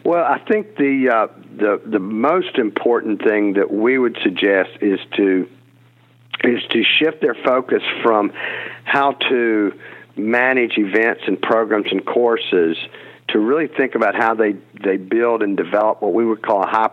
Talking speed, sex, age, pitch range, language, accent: 165 wpm, male, 50-69, 100-115 Hz, English, American